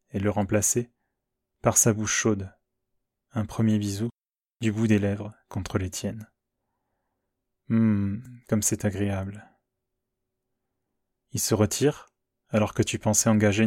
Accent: French